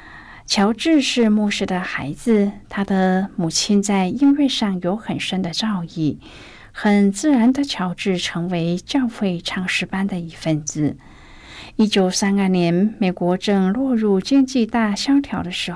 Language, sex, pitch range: Chinese, female, 180-225 Hz